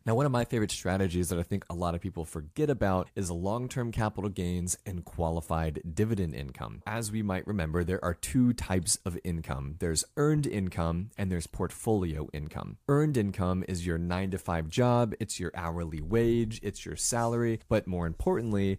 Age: 30-49